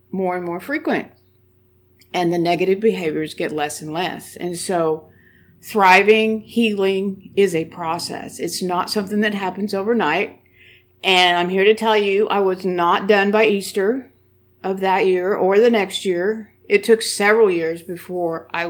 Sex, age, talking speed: female, 50-69, 160 wpm